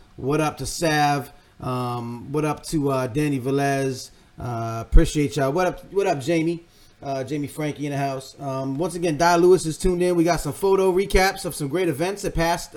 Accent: American